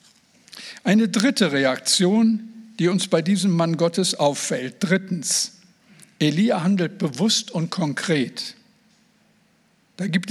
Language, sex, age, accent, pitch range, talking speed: German, male, 60-79, German, 180-225 Hz, 105 wpm